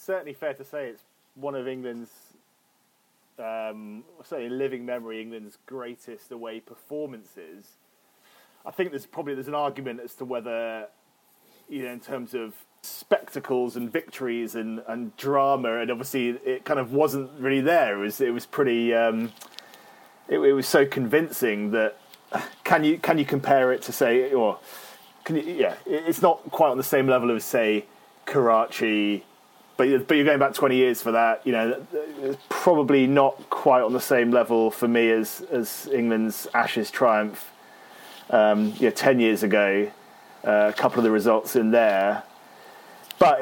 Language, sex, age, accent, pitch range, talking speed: English, male, 30-49, British, 115-140 Hz, 165 wpm